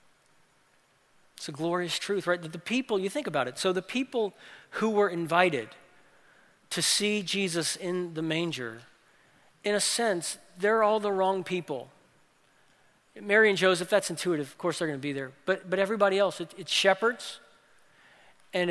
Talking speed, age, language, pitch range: 165 wpm, 40-59, English, 165-205 Hz